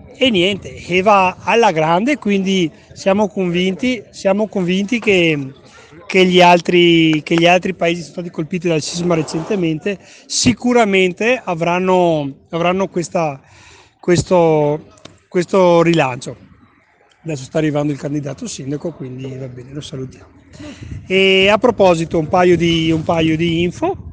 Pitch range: 150-190 Hz